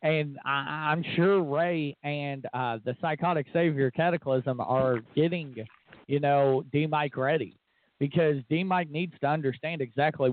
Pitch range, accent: 130-160 Hz, American